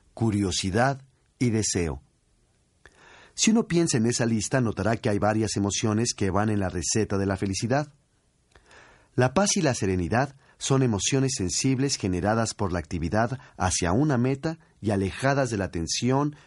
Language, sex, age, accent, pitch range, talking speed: Spanish, male, 40-59, Mexican, 95-130 Hz, 155 wpm